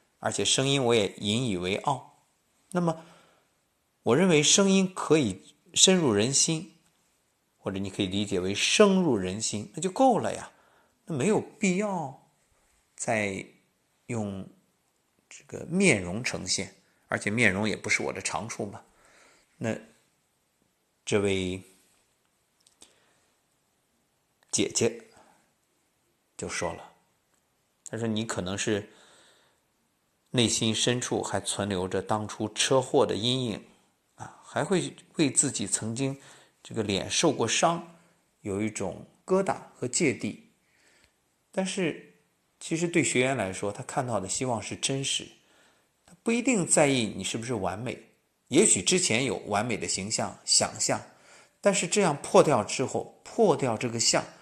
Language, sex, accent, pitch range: Chinese, male, native, 105-170 Hz